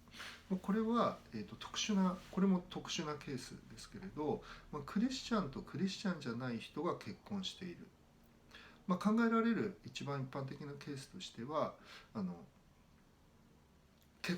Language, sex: Japanese, male